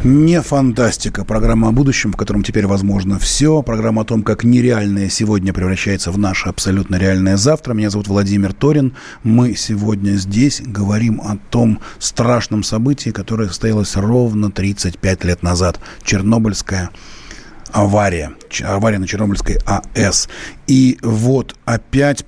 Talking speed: 130 wpm